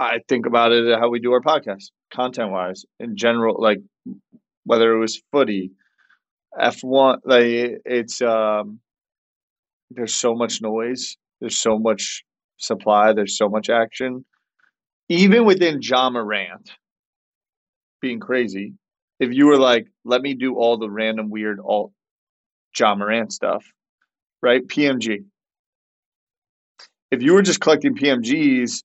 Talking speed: 135 wpm